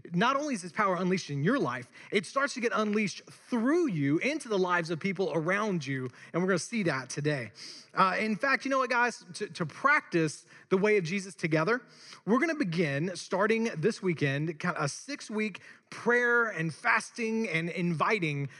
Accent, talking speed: American, 185 wpm